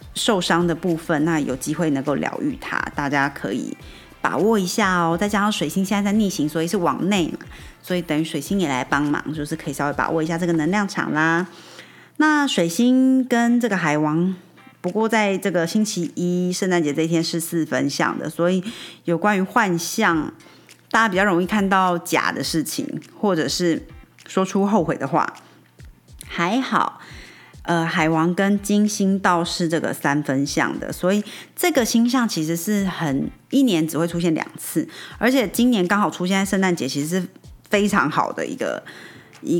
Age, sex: 30-49, female